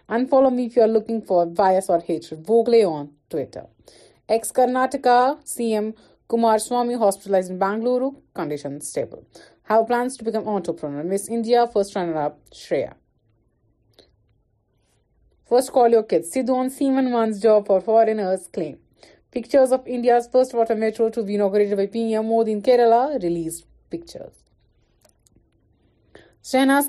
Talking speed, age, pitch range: 135 wpm, 30-49, 195-240 Hz